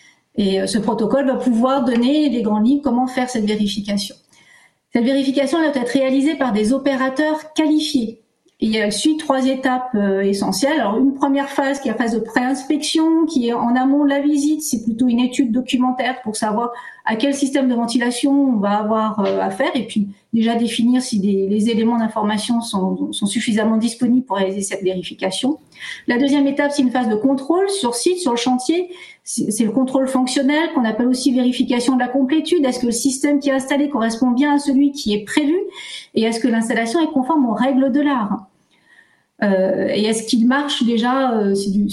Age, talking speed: 40-59, 195 wpm